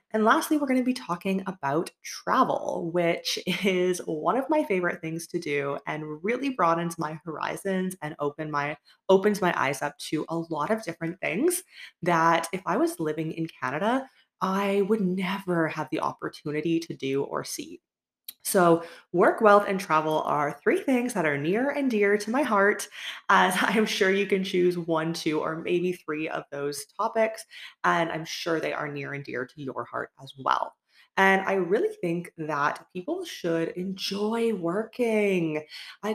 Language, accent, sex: English, American, female